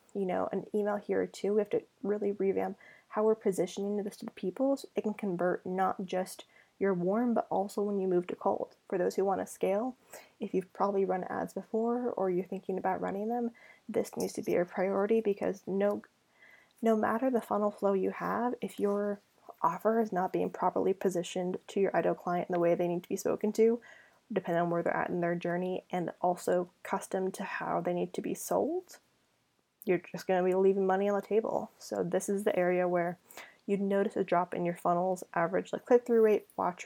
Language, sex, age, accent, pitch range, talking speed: English, female, 10-29, American, 185-230 Hz, 220 wpm